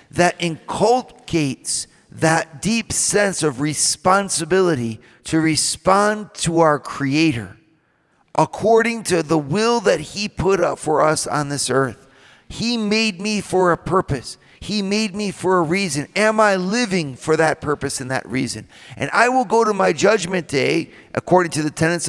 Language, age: English, 40-59